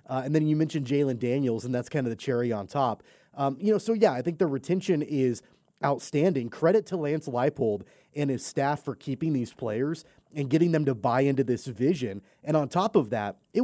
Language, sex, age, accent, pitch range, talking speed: English, male, 30-49, American, 130-155 Hz, 225 wpm